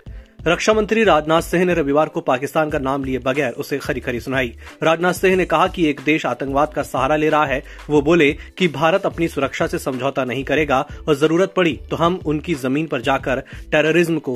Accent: native